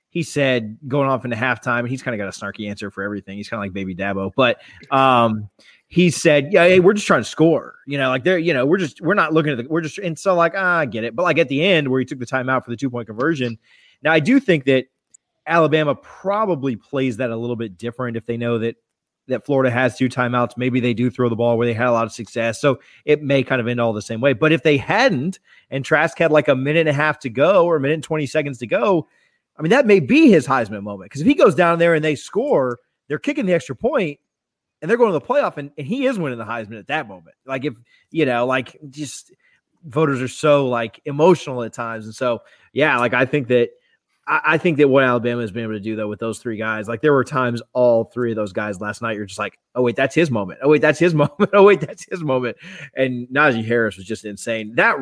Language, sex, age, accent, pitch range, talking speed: English, male, 30-49, American, 115-155 Hz, 270 wpm